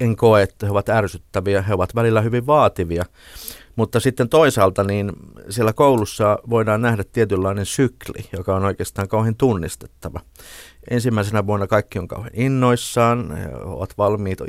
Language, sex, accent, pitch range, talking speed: Finnish, male, native, 95-115 Hz, 140 wpm